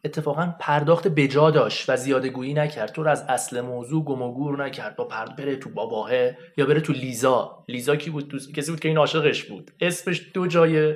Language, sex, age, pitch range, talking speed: Persian, male, 30-49, 125-165 Hz, 210 wpm